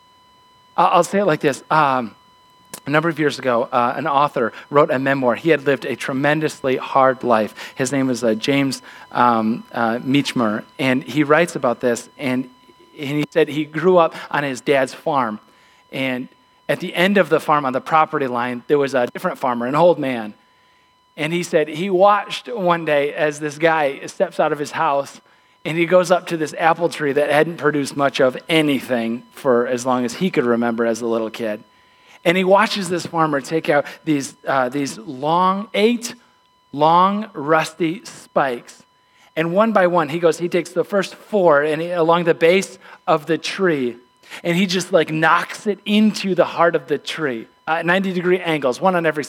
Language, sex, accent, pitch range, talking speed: English, male, American, 135-175 Hz, 195 wpm